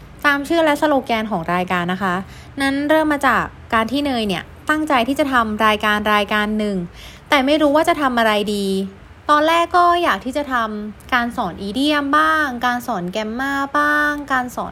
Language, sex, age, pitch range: Thai, female, 20-39, 195-285 Hz